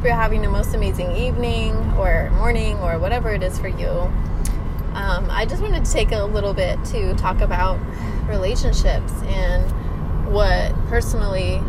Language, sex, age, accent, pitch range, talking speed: English, female, 20-39, American, 80-95 Hz, 155 wpm